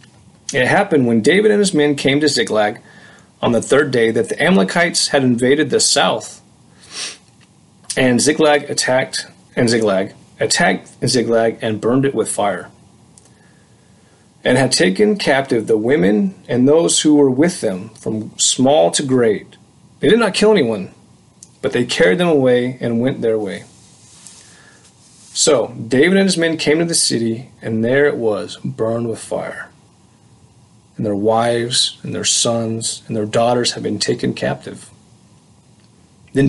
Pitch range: 115-150 Hz